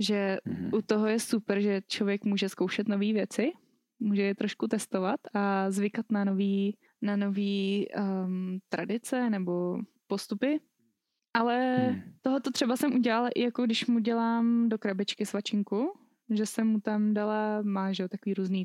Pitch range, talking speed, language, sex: 200-240 Hz, 150 wpm, Czech, female